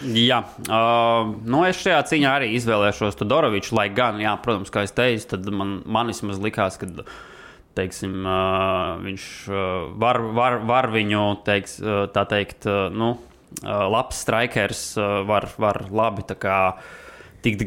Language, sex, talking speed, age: English, male, 155 wpm, 20-39